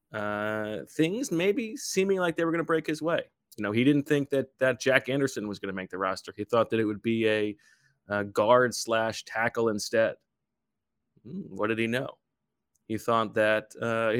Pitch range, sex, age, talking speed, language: 105-130 Hz, male, 30-49, 205 wpm, English